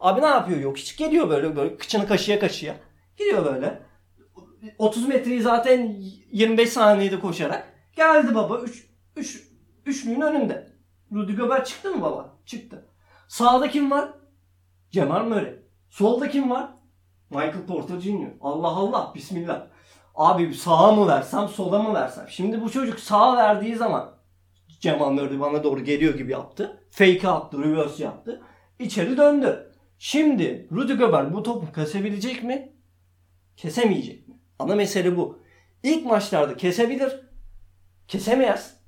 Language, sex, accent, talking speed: Turkish, male, native, 135 wpm